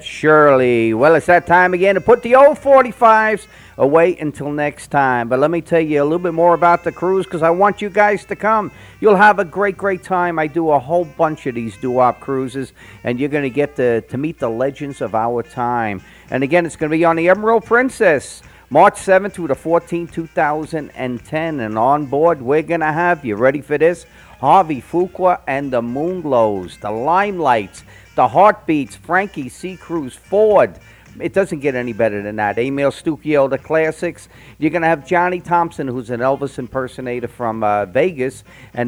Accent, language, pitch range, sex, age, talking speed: American, English, 125-175 Hz, male, 50-69, 195 wpm